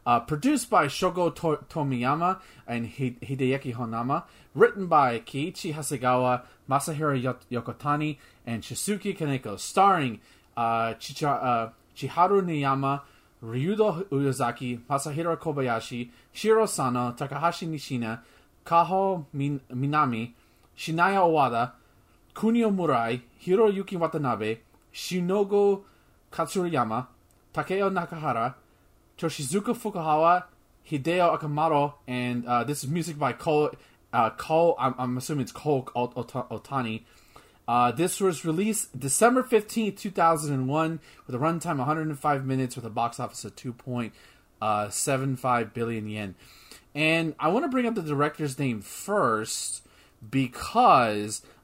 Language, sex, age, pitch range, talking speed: English, male, 30-49, 120-165 Hz, 115 wpm